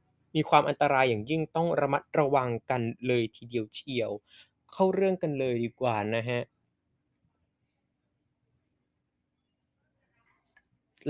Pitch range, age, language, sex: 130-170 Hz, 20-39, Thai, male